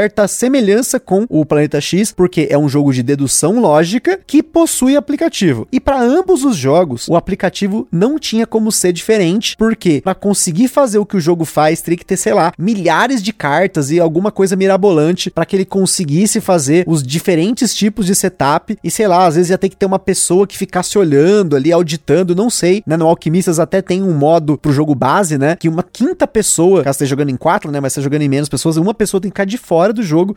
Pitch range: 165-220 Hz